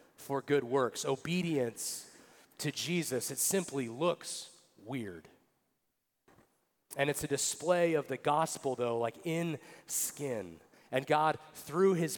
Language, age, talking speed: English, 40-59, 125 wpm